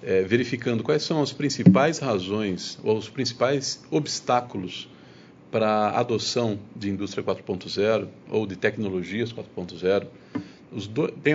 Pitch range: 115-155 Hz